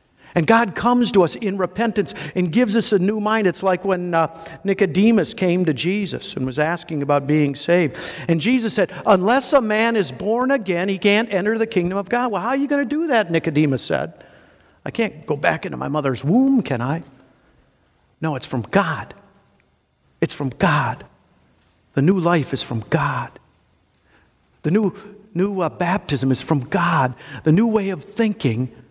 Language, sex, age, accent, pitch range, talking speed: English, male, 50-69, American, 140-200 Hz, 185 wpm